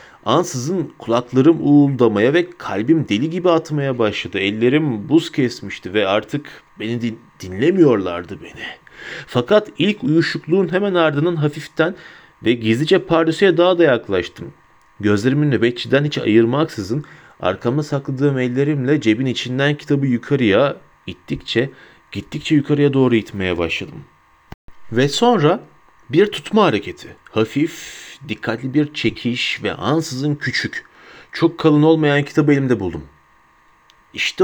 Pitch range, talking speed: 110-160 Hz, 115 wpm